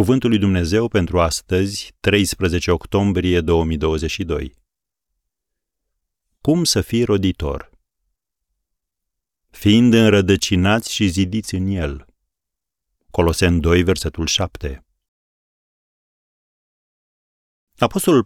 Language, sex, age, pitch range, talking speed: Romanian, male, 40-59, 85-105 Hz, 75 wpm